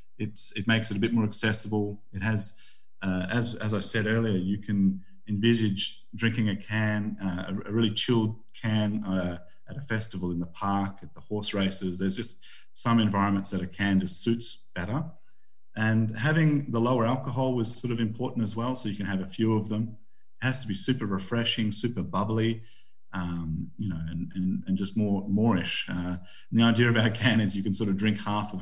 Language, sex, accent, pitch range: English, male, Australian, 95-115 Hz